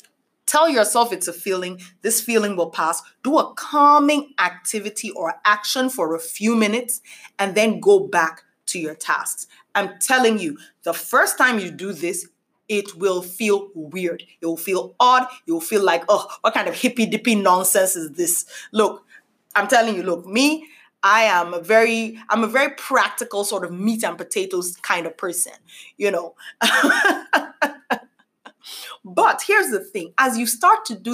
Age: 30-49